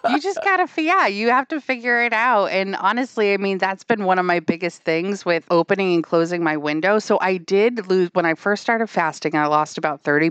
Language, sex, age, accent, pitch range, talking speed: English, female, 30-49, American, 170-235 Hz, 235 wpm